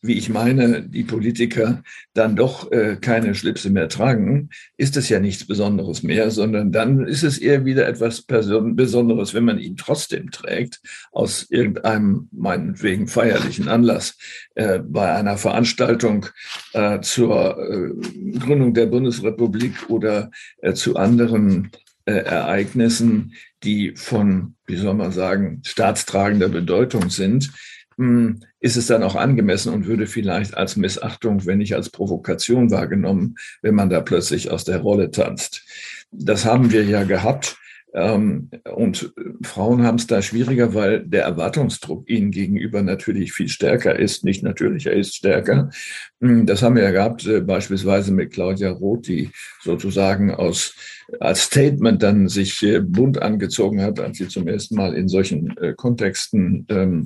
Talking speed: 145 wpm